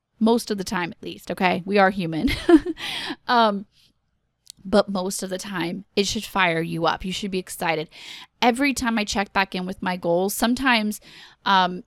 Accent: American